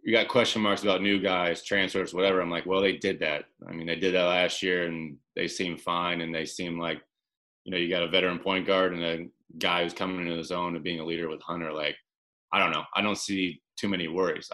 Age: 20-39